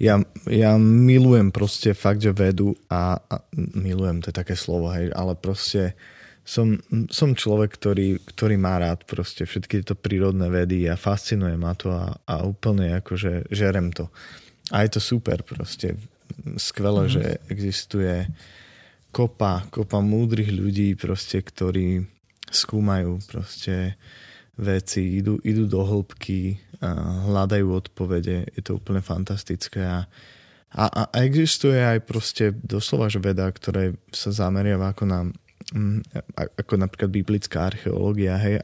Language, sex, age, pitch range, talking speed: Slovak, male, 20-39, 95-105 Hz, 135 wpm